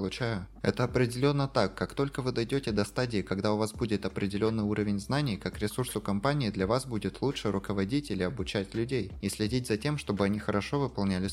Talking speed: 185 wpm